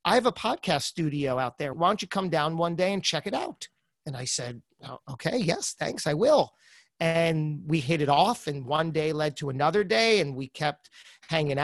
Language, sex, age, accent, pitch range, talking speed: English, male, 30-49, American, 150-195 Hz, 215 wpm